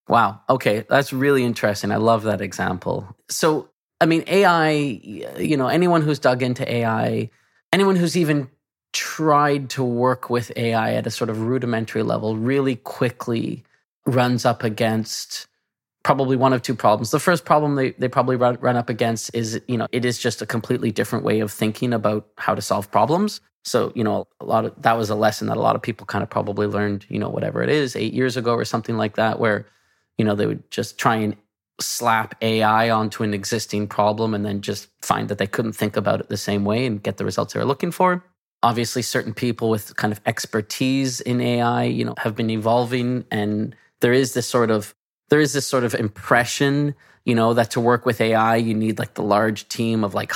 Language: English